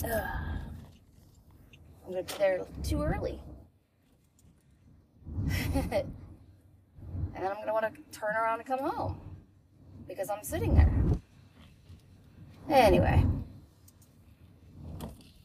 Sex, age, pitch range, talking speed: female, 30-49, 85-125 Hz, 95 wpm